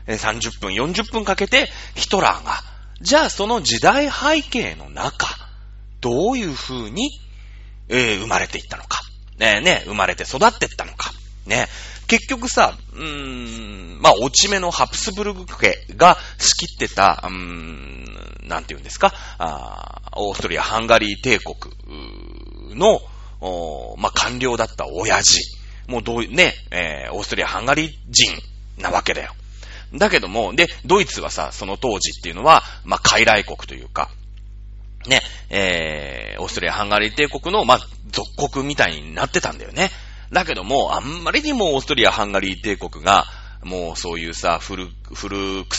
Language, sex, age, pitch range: Japanese, male, 30-49, 100-150 Hz